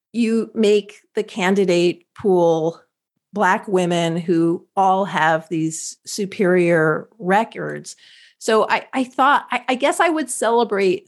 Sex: female